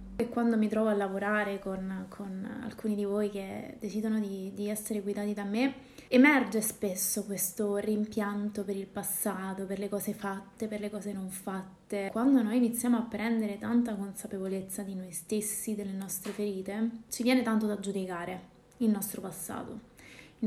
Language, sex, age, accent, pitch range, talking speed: Italian, female, 20-39, native, 200-230 Hz, 165 wpm